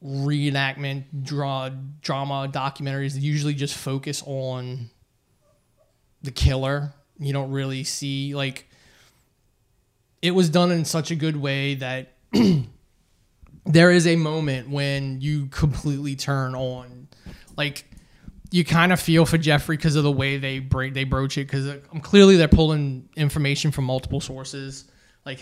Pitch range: 130-145 Hz